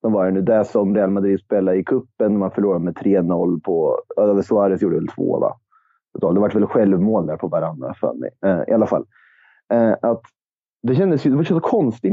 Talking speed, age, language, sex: 200 wpm, 30-49, English, male